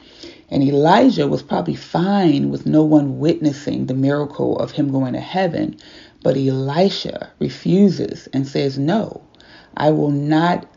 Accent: American